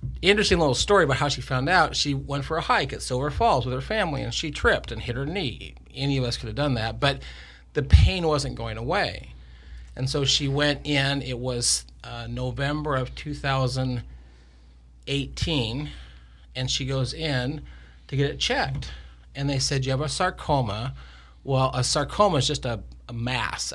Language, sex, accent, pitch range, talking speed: English, male, American, 100-140 Hz, 185 wpm